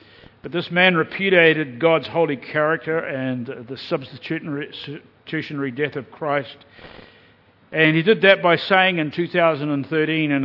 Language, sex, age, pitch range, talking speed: English, male, 50-69, 125-160 Hz, 125 wpm